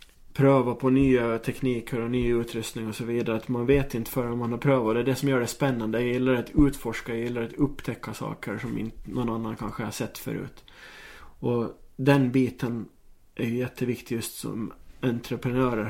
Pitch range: 115-130 Hz